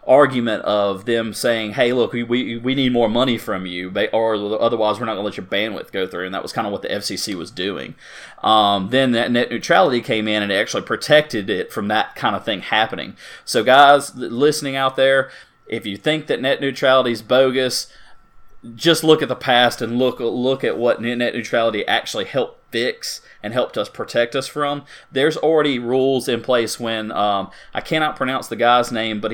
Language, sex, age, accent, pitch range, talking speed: English, male, 30-49, American, 110-135 Hz, 205 wpm